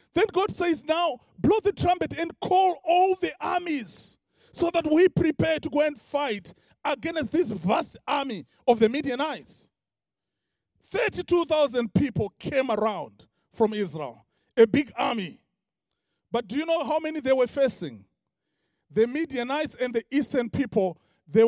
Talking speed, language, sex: 145 wpm, English, male